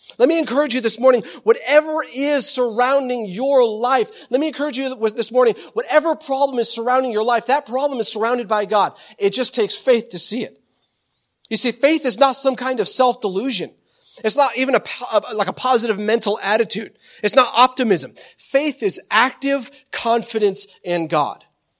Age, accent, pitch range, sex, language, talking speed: 40-59, American, 190-255 Hz, male, English, 170 wpm